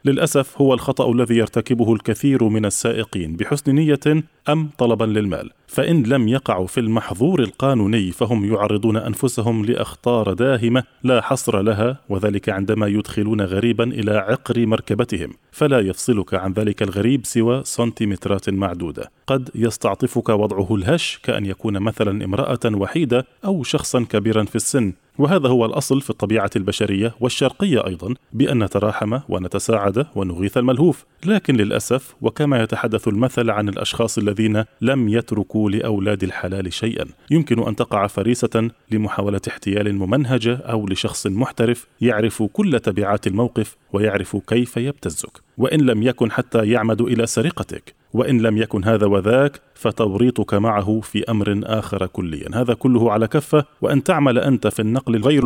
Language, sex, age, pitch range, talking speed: Arabic, male, 20-39, 105-130 Hz, 135 wpm